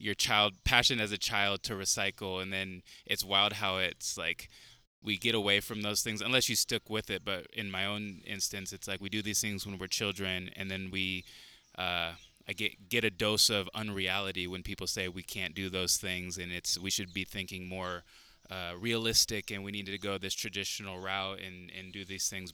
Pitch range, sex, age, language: 95-105 Hz, male, 20-39, English